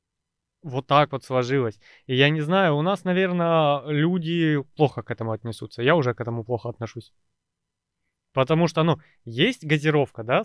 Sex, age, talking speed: male, 20-39, 160 wpm